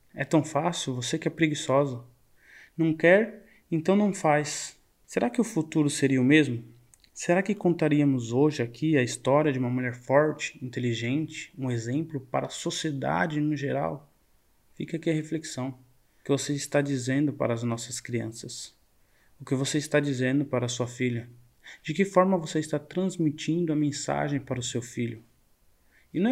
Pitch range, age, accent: 125-155 Hz, 20-39, Brazilian